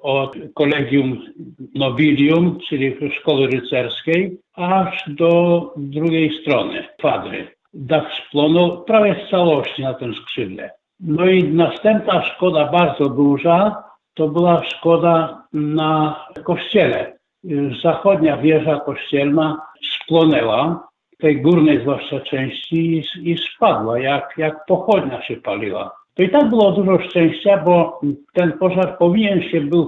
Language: Polish